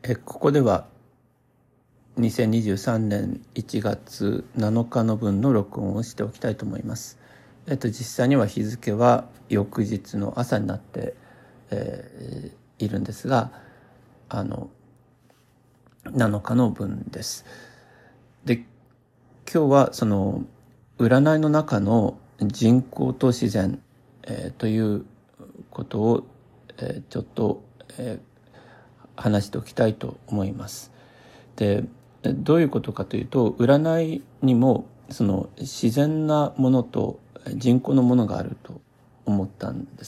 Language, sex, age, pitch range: Japanese, male, 50-69, 105-130 Hz